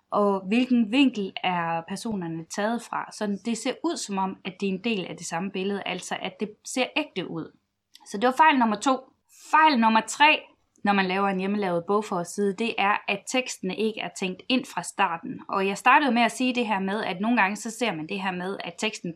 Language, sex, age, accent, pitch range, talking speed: Danish, female, 20-39, native, 195-250 Hz, 230 wpm